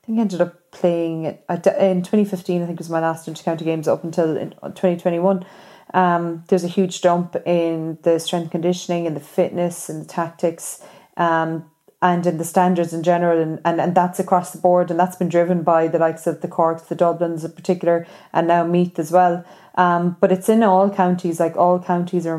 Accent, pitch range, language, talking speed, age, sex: Irish, 170-190 Hz, English, 205 wpm, 20-39, female